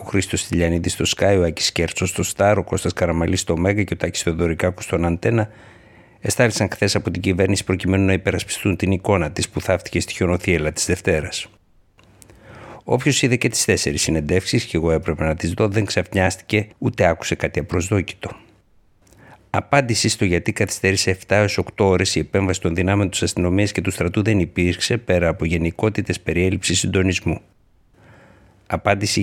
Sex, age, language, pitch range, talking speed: male, 60-79, Greek, 85-105 Hz, 160 wpm